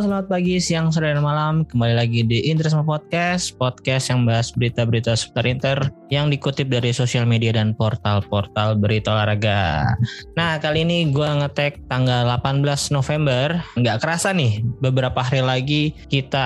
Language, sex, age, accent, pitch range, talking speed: Indonesian, male, 20-39, native, 115-140 Hz, 150 wpm